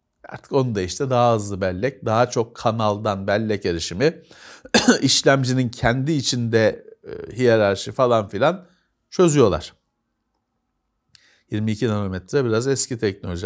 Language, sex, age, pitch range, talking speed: Turkish, male, 50-69, 110-155 Hz, 110 wpm